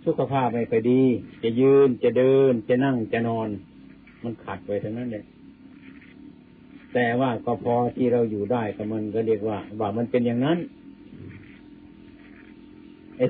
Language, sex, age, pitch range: Thai, male, 60-79, 105-140 Hz